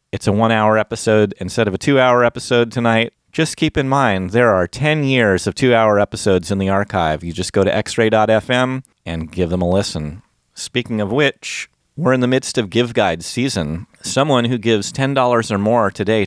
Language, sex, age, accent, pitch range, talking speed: English, male, 30-49, American, 95-120 Hz, 190 wpm